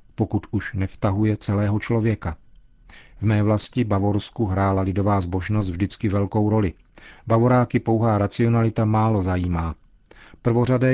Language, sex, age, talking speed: Czech, male, 40-59, 115 wpm